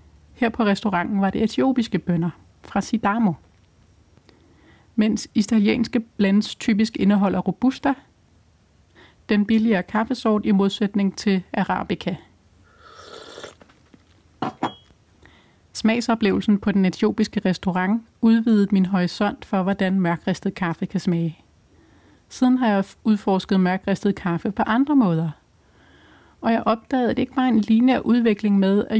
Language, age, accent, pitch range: Danish, 30-49, native, 190-235 Hz